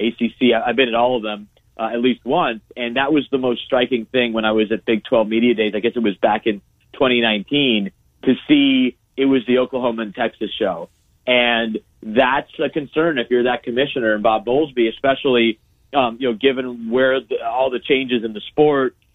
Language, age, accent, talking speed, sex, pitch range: English, 40-59, American, 205 wpm, male, 115-135 Hz